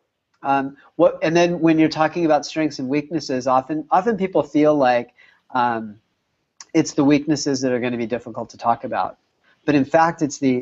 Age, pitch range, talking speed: 30-49, 120-155 Hz, 190 wpm